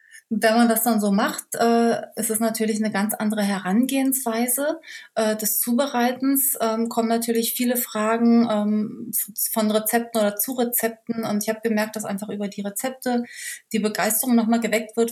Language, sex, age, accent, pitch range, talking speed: German, female, 30-49, German, 205-235 Hz, 165 wpm